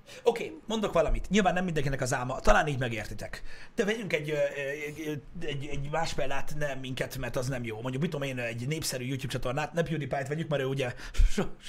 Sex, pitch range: male, 115-155 Hz